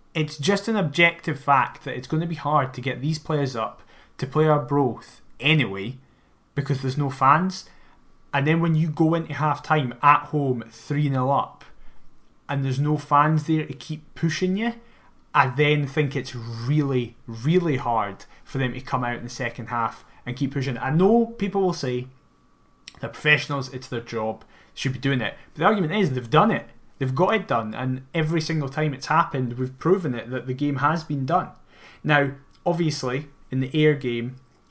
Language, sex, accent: English, male, British